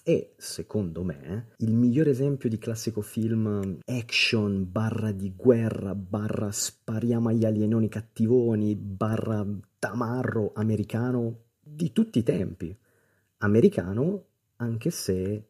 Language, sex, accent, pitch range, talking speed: Italian, male, native, 95-120 Hz, 110 wpm